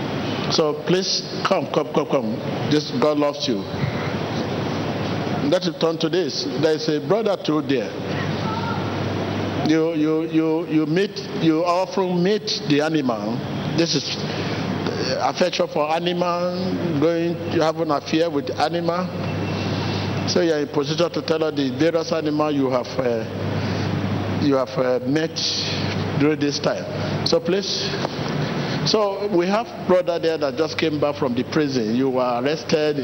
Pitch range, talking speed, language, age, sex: 135-165 Hz, 145 wpm, English, 60-79, male